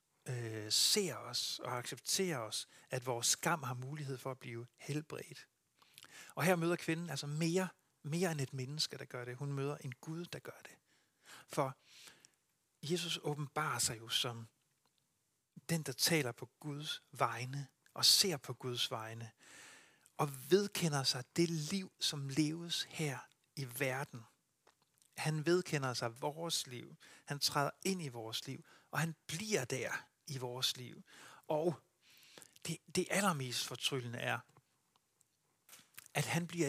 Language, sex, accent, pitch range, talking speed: Danish, male, native, 130-165 Hz, 145 wpm